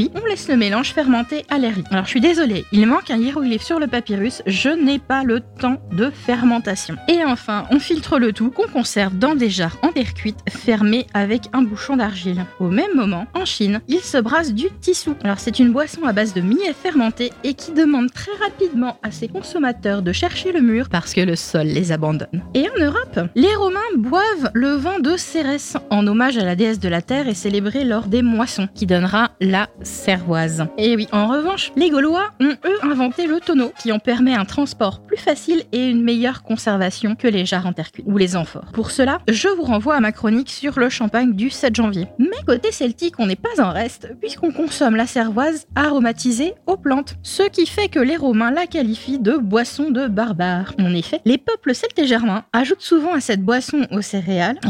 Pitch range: 215-295 Hz